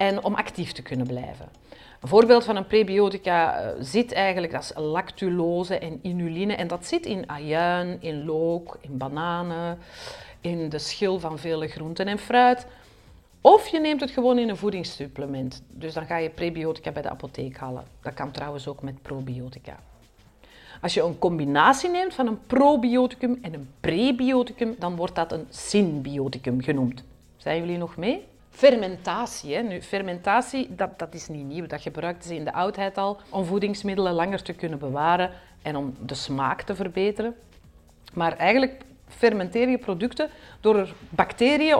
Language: Dutch